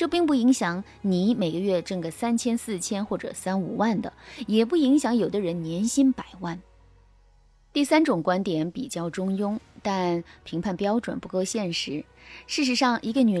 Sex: female